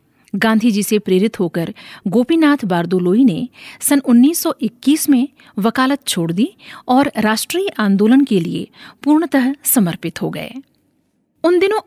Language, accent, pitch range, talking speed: Hindi, native, 200-270 Hz, 120 wpm